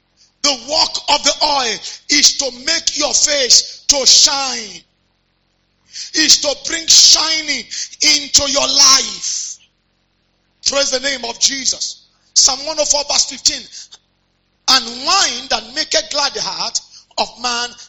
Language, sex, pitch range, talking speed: English, male, 240-310 Hz, 120 wpm